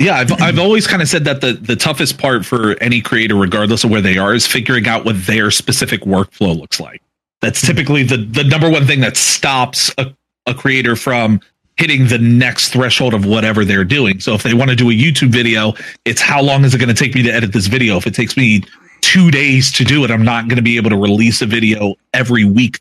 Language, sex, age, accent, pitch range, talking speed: English, male, 30-49, American, 115-140 Hz, 245 wpm